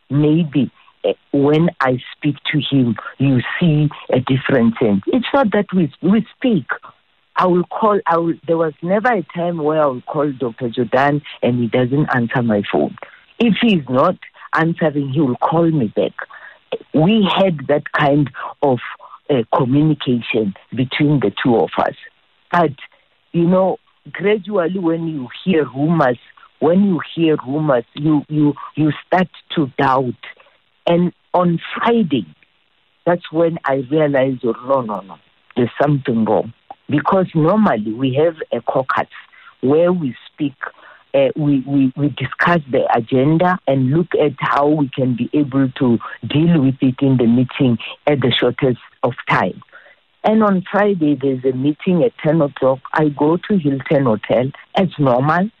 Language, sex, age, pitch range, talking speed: English, female, 50-69, 130-170 Hz, 155 wpm